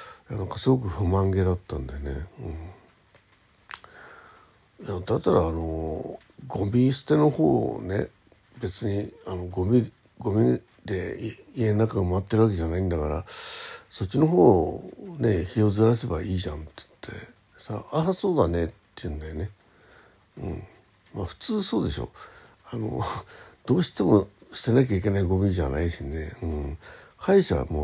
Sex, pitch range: male, 85-110 Hz